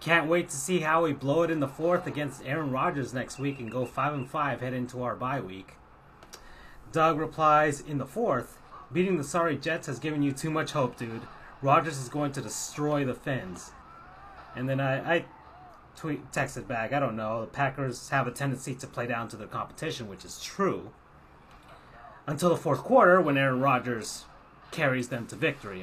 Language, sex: English, male